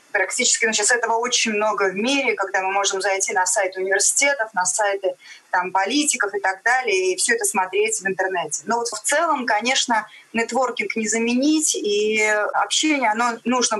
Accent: native